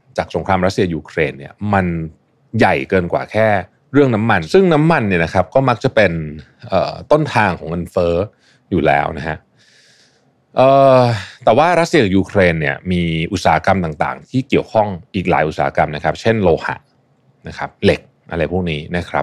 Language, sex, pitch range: Thai, male, 90-125 Hz